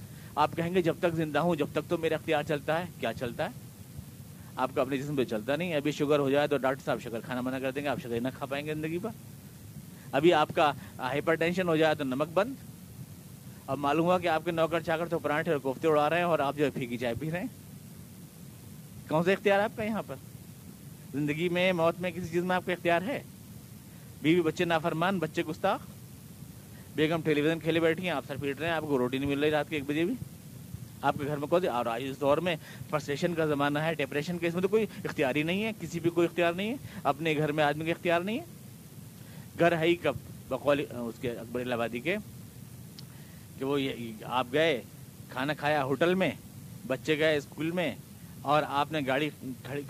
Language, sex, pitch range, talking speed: Urdu, male, 140-170 Hz, 220 wpm